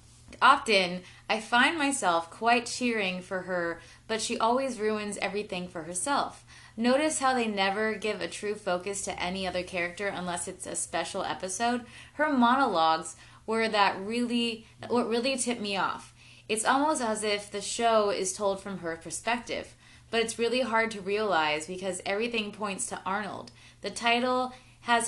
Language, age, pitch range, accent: English, 20-39, 175-220 Hz, American